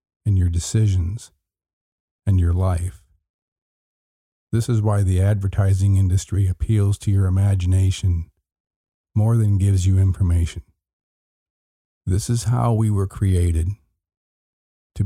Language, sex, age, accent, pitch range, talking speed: English, male, 50-69, American, 90-105 Hz, 110 wpm